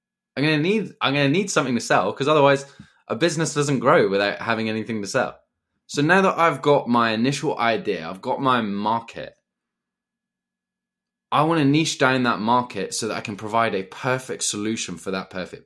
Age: 20-39